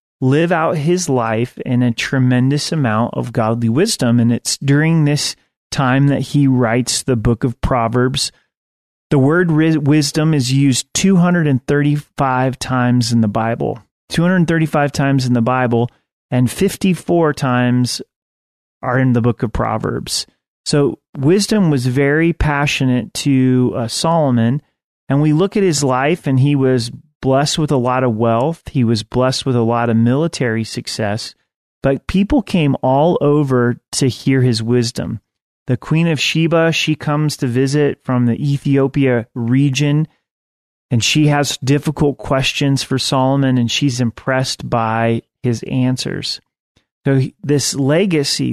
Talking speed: 145 wpm